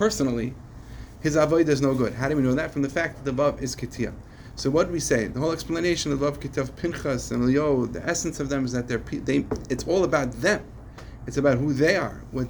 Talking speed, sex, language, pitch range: 245 wpm, male, English, 115-140 Hz